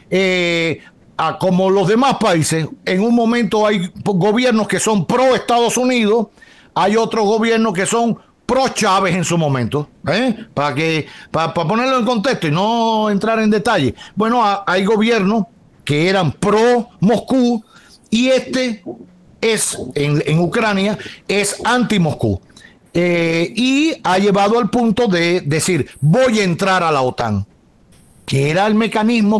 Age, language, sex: 50-69, Spanish, male